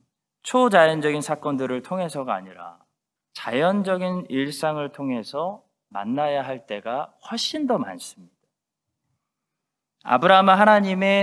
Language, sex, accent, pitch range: Korean, male, native, 150-220 Hz